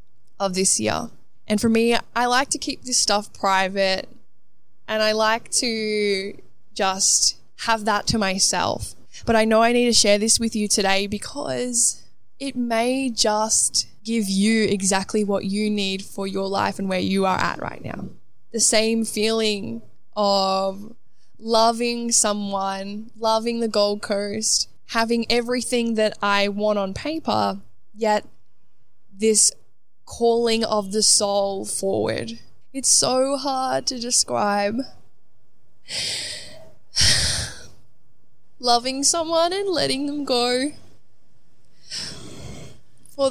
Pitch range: 200-240 Hz